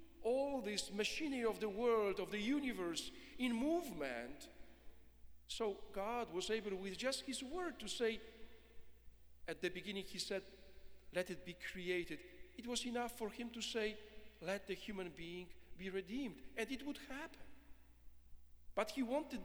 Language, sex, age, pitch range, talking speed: English, male, 50-69, 170-260 Hz, 155 wpm